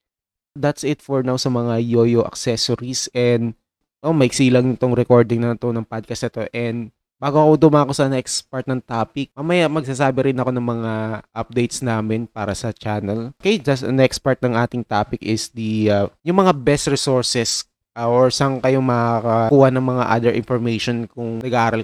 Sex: male